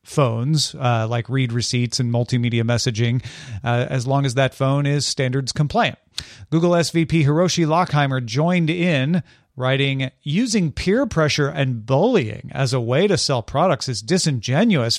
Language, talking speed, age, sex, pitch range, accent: English, 150 wpm, 40-59, male, 125-160 Hz, American